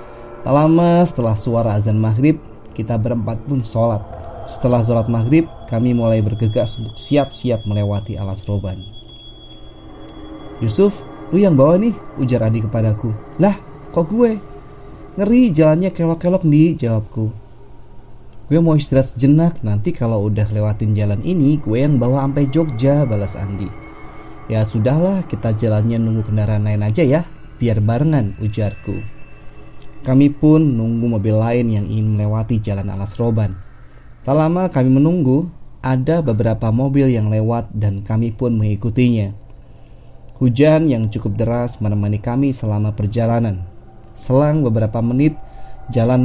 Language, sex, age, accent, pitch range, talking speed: Indonesian, male, 30-49, native, 110-135 Hz, 130 wpm